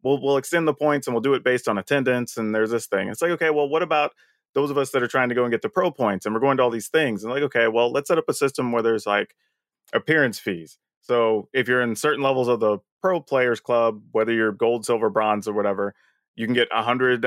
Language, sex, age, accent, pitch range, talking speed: English, male, 30-49, American, 115-140 Hz, 275 wpm